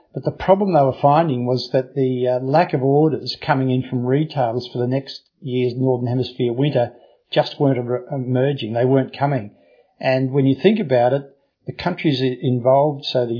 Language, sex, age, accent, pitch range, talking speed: English, male, 50-69, Australian, 125-145 Hz, 185 wpm